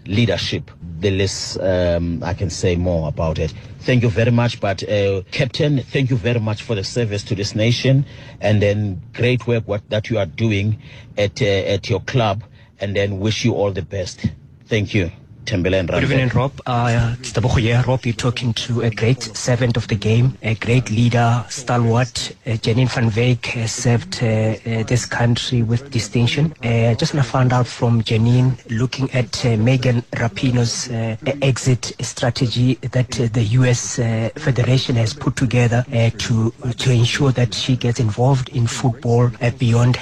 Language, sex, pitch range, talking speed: English, male, 115-130 Hz, 175 wpm